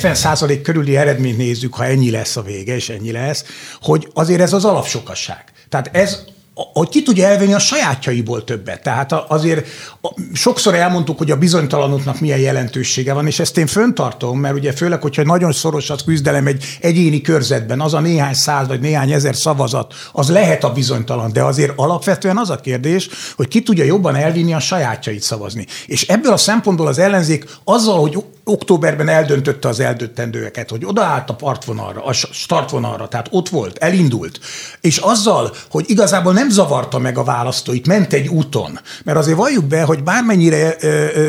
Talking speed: 170 wpm